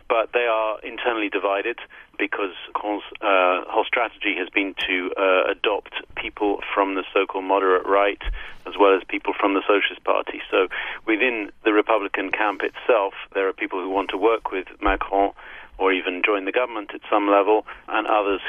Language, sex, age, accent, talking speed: English, male, 40-59, British, 175 wpm